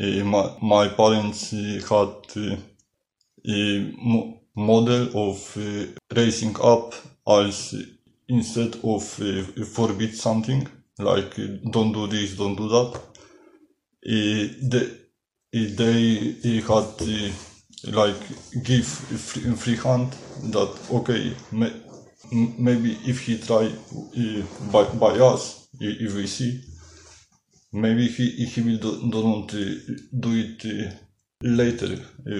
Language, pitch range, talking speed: English, 105-115 Hz, 115 wpm